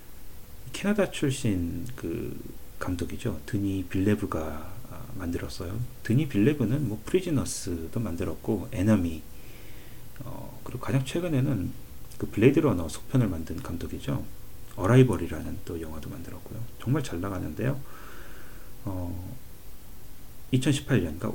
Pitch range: 95-130 Hz